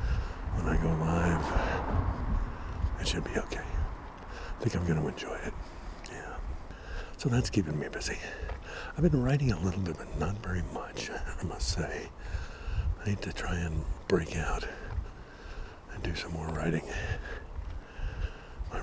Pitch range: 80-95 Hz